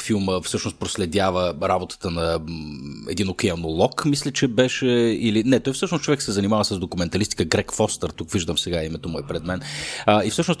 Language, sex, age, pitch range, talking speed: Bulgarian, male, 30-49, 90-115 Hz, 175 wpm